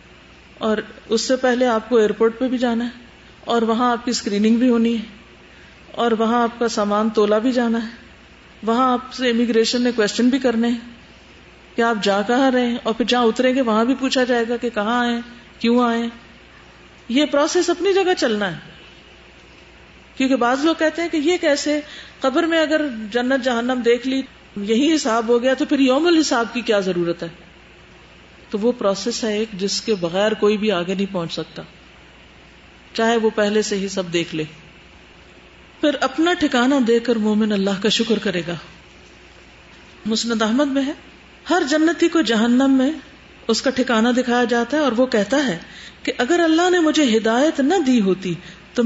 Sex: female